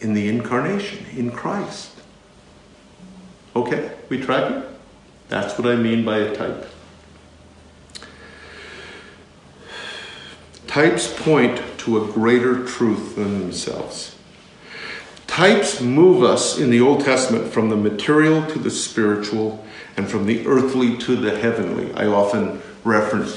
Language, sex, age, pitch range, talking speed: English, male, 50-69, 110-145 Hz, 120 wpm